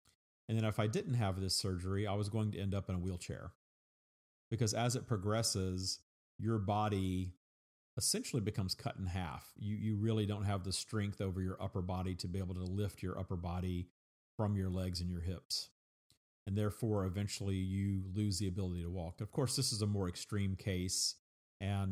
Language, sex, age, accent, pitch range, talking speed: English, male, 40-59, American, 95-110 Hz, 195 wpm